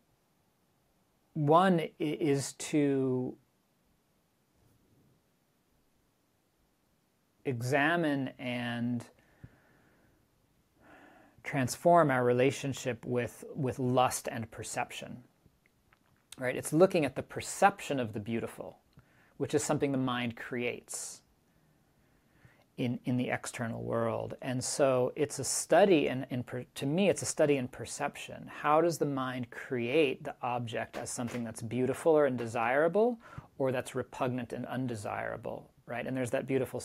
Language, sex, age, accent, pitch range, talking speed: English, male, 40-59, American, 120-140 Hz, 115 wpm